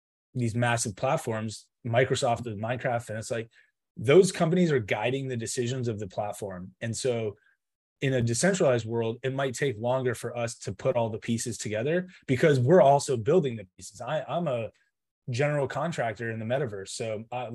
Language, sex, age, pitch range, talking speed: English, male, 20-39, 115-140 Hz, 175 wpm